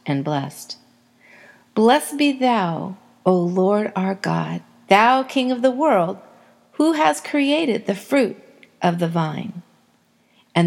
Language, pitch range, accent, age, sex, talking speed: English, 175-240 Hz, American, 50-69, female, 130 wpm